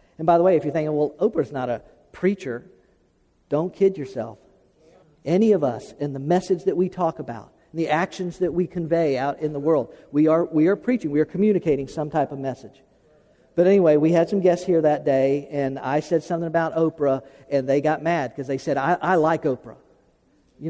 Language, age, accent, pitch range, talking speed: English, 50-69, American, 150-185 Hz, 215 wpm